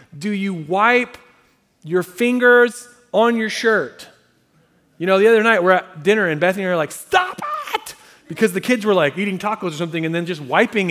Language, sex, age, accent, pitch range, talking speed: English, male, 30-49, American, 160-225 Hz, 205 wpm